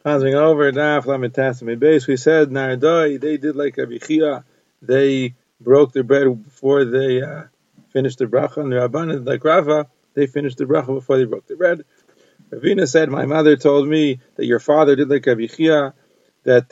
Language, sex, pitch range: English, male, 125-155 Hz